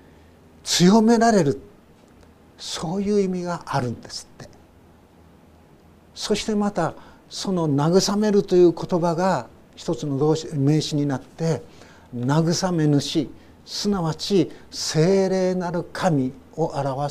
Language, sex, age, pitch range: Japanese, male, 50-69, 120-190 Hz